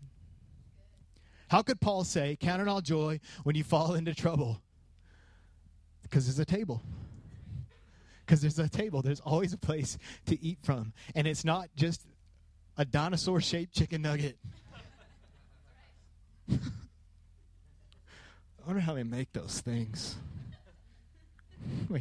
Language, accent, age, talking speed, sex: English, American, 30-49, 115 wpm, male